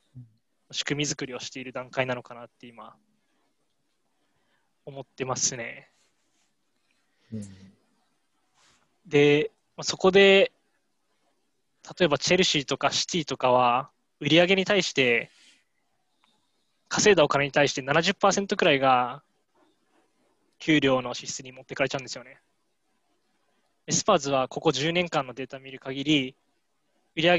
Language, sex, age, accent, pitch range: Japanese, male, 20-39, native, 130-170 Hz